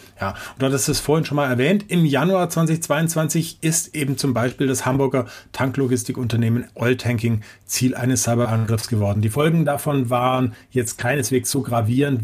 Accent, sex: German, male